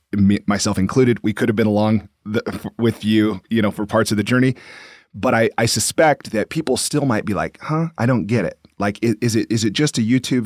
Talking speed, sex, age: 230 wpm, male, 30-49